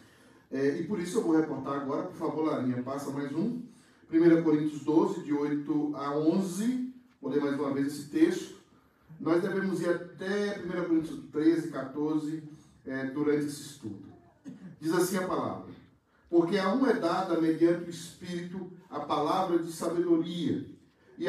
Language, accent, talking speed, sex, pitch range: Portuguese, Brazilian, 160 wpm, male, 150-180 Hz